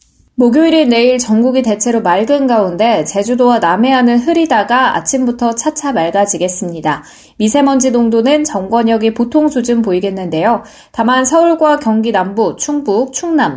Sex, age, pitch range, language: female, 20-39, 190-260 Hz, Korean